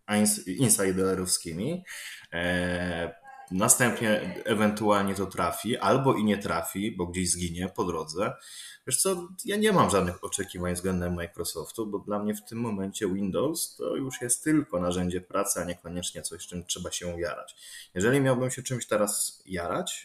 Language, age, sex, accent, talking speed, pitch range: Polish, 20-39, male, native, 150 wpm, 95-130 Hz